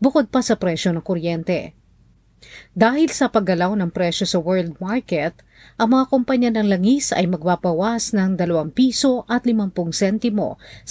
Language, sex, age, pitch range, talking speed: Filipino, female, 40-59, 180-235 Hz, 125 wpm